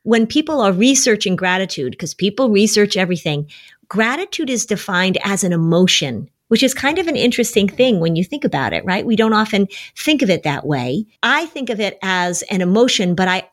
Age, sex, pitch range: 40-59, female, 175-225 Hz